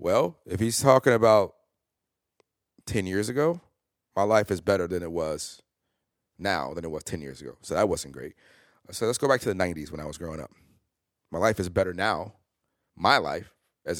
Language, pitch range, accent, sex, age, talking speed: English, 90-110 Hz, American, male, 30-49, 195 wpm